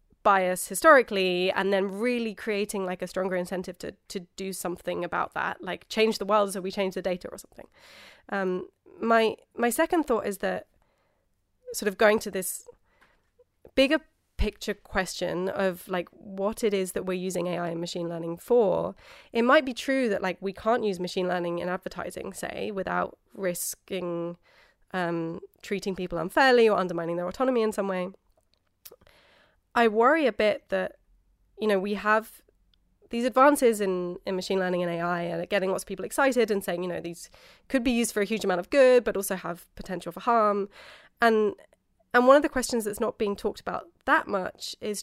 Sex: female